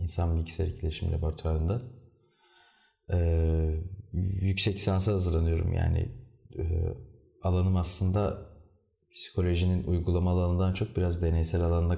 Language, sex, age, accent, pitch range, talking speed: Turkish, male, 30-49, native, 85-100 Hz, 95 wpm